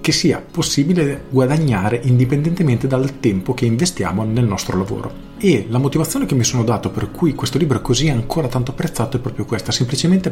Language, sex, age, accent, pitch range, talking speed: Italian, male, 40-59, native, 110-140 Hz, 180 wpm